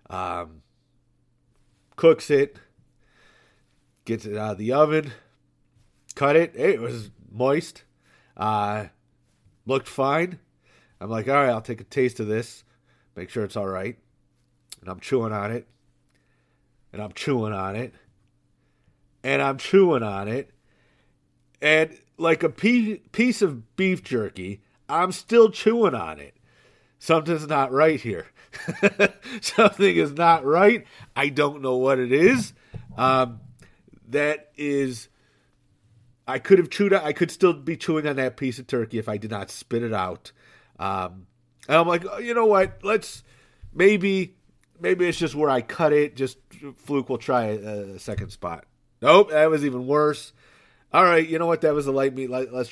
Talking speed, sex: 155 wpm, male